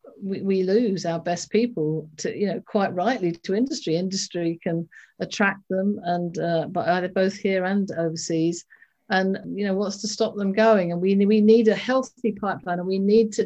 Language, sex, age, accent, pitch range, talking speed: English, female, 50-69, British, 165-205 Hz, 195 wpm